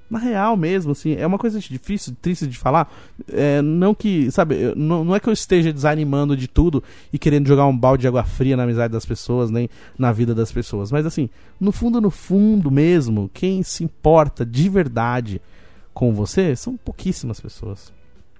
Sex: male